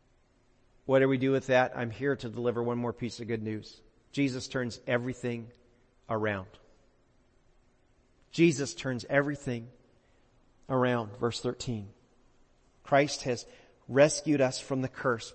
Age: 40-59